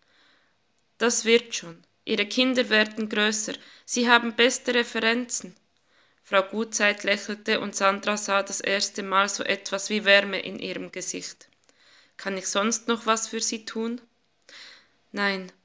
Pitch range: 195-230 Hz